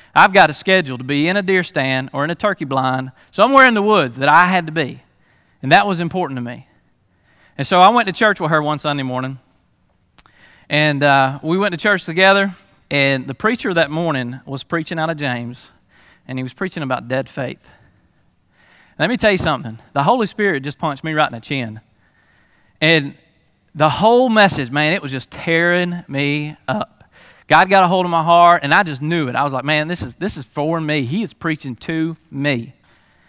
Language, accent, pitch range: English, American, 140-185 Hz